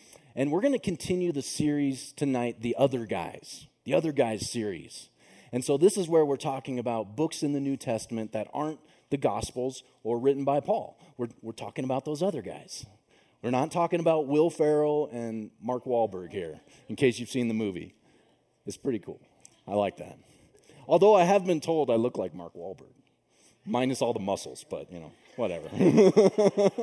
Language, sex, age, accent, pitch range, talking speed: English, male, 30-49, American, 115-165 Hz, 185 wpm